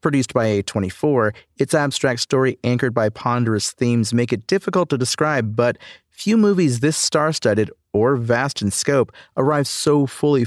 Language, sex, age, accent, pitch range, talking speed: English, male, 40-59, American, 105-130 Hz, 155 wpm